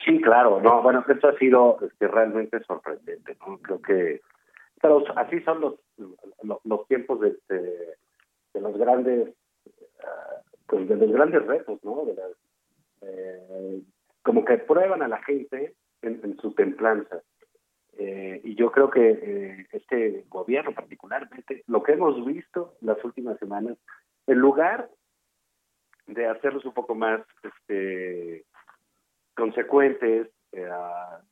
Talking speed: 140 wpm